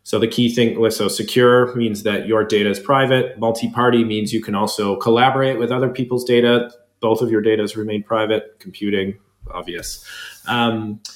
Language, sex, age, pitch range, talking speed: English, male, 30-49, 105-125 Hz, 175 wpm